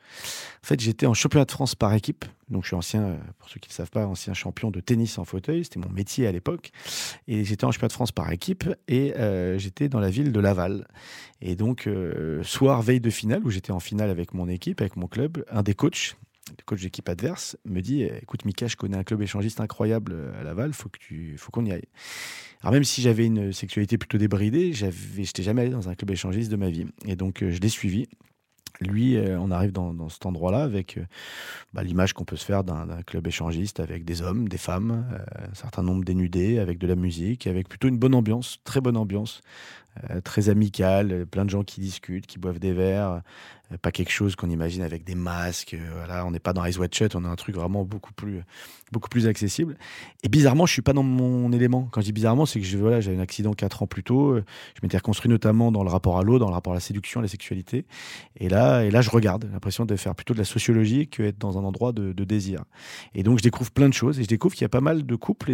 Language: French